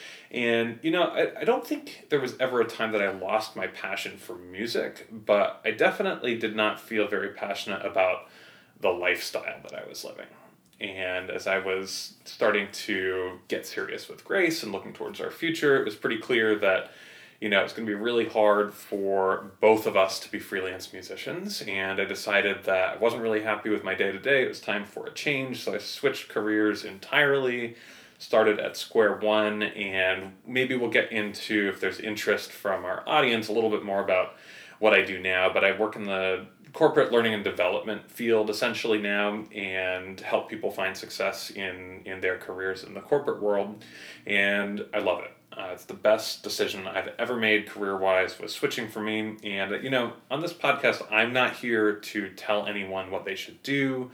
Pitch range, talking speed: 95-115 Hz, 195 wpm